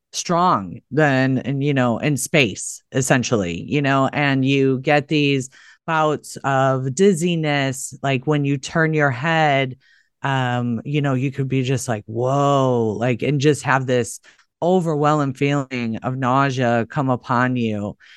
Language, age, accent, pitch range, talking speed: English, 30-49, American, 130-160 Hz, 145 wpm